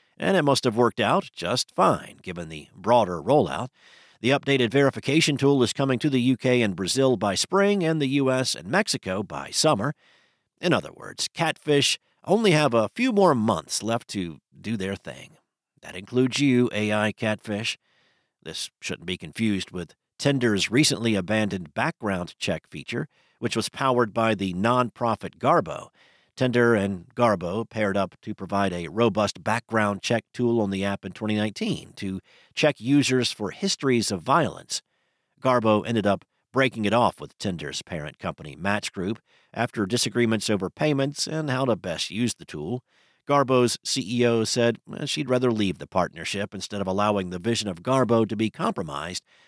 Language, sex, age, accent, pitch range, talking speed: English, male, 50-69, American, 100-130 Hz, 165 wpm